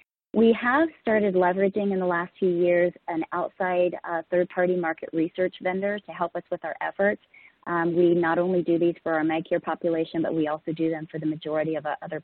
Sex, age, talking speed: female, 30-49, 205 wpm